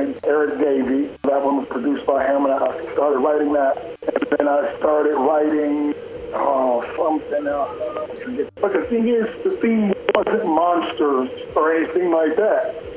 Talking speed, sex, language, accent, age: 155 wpm, male, English, American, 50-69